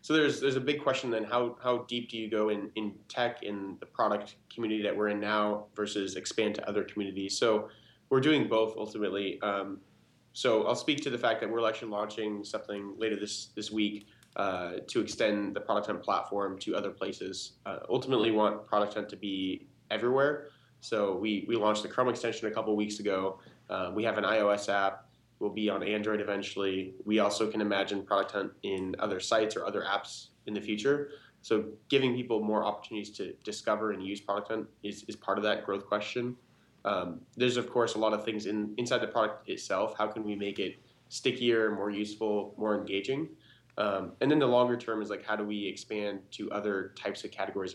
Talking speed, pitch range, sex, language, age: 205 wpm, 100-115 Hz, male, English, 20-39